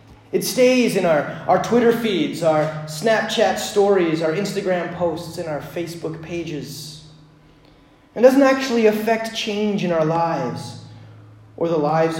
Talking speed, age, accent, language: 140 wpm, 30-49, American, English